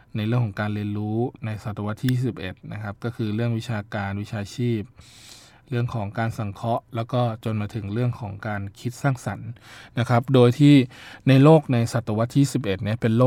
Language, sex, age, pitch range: Thai, male, 20-39, 110-125 Hz